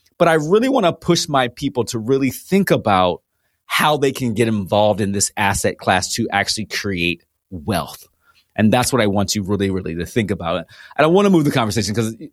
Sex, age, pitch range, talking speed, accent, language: male, 30-49, 105-150 Hz, 215 wpm, American, English